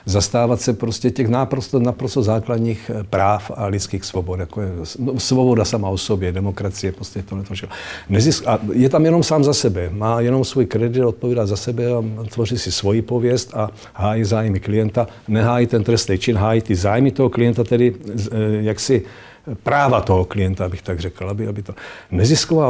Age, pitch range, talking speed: 60-79, 105-125 Hz, 170 wpm